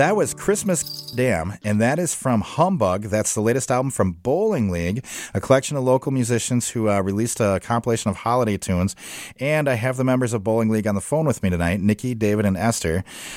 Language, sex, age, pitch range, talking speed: English, male, 30-49, 105-135 Hz, 210 wpm